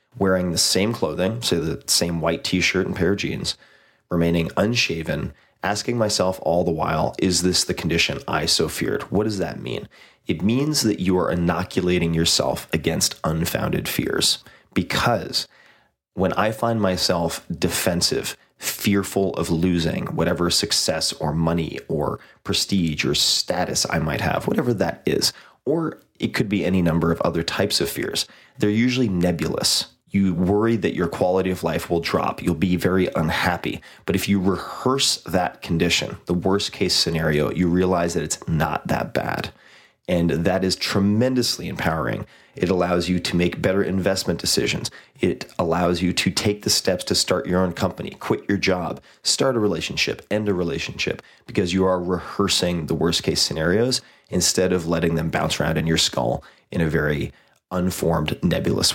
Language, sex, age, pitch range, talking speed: English, male, 30-49, 85-95 Hz, 165 wpm